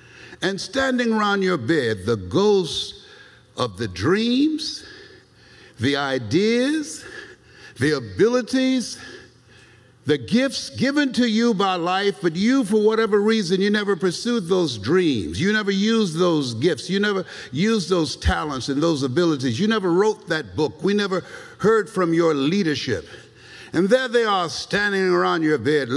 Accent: American